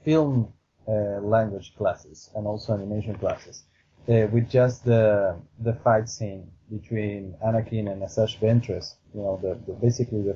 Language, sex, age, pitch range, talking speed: English, male, 30-49, 95-115 Hz, 150 wpm